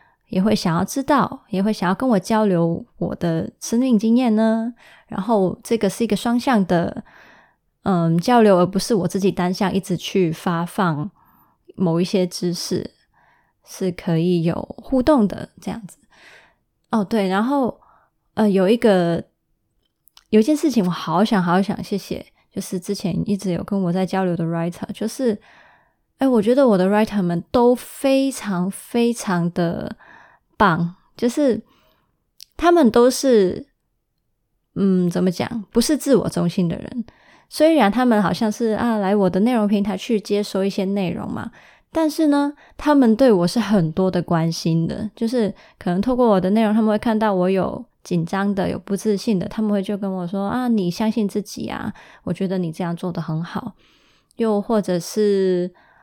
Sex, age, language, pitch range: female, 20-39, Chinese, 180-230 Hz